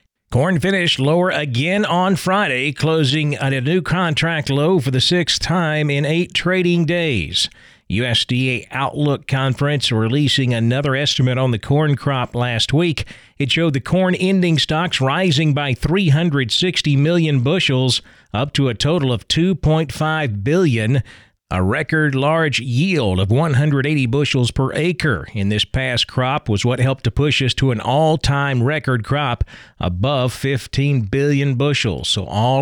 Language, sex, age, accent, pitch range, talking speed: English, male, 40-59, American, 120-155 Hz, 145 wpm